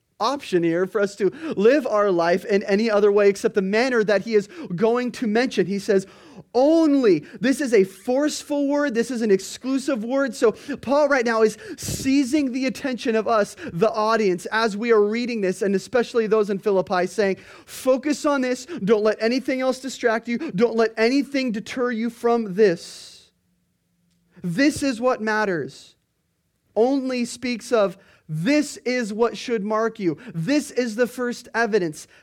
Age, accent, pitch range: 30-49, American, 185-240 Hz